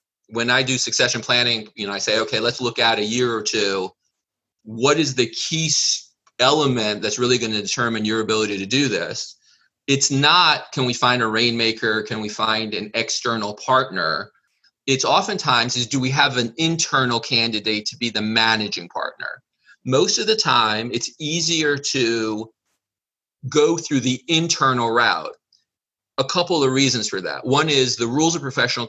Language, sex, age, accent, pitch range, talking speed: English, male, 30-49, American, 110-135 Hz, 170 wpm